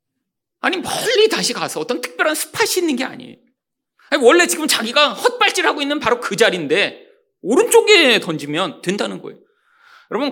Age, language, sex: 40-59, Korean, male